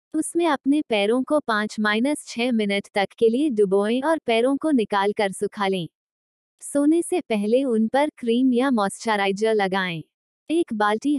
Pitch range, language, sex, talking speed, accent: 210-270 Hz, Hindi, female, 150 wpm, native